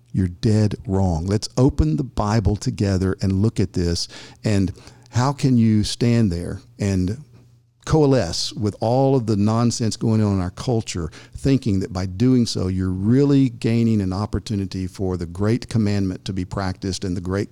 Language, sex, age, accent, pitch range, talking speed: English, male, 50-69, American, 105-135 Hz, 170 wpm